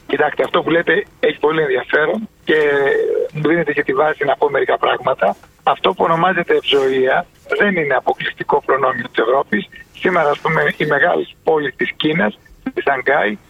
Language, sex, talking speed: Greek, male, 165 wpm